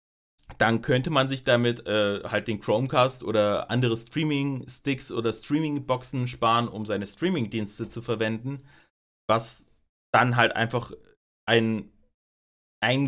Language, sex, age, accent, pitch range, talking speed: German, male, 30-49, German, 110-135 Hz, 120 wpm